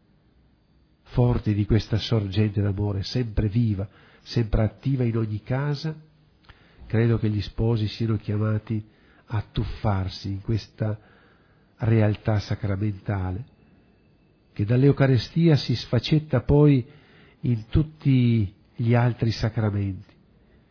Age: 50-69